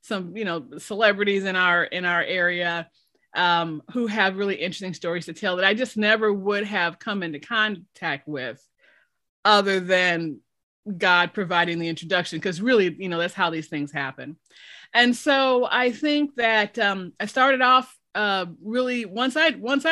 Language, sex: English, female